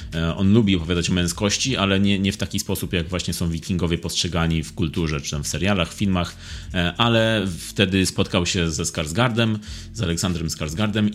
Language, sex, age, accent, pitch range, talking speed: Polish, male, 30-49, native, 80-100 Hz, 180 wpm